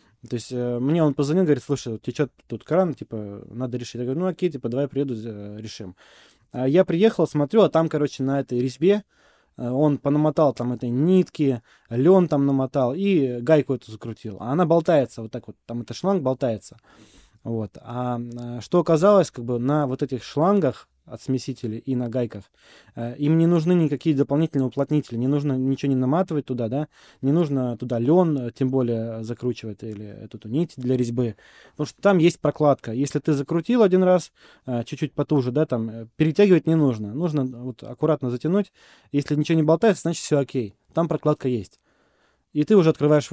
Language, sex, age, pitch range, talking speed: Russian, male, 20-39, 120-160 Hz, 175 wpm